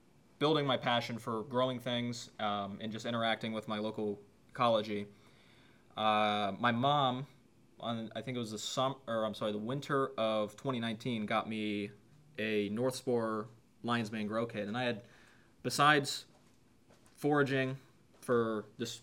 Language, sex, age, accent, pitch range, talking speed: English, male, 20-39, American, 105-125 Hz, 150 wpm